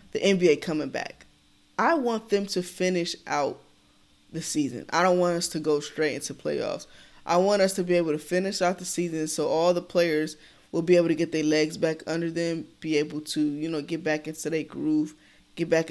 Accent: American